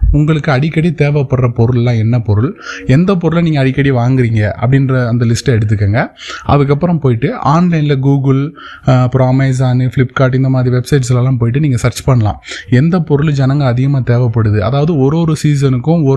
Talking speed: 145 wpm